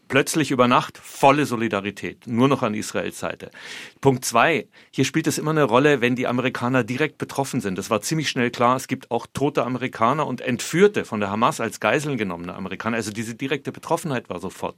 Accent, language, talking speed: German, German, 200 wpm